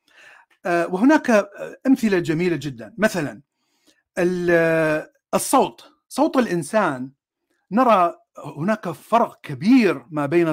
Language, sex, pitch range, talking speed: Arabic, male, 145-225 Hz, 80 wpm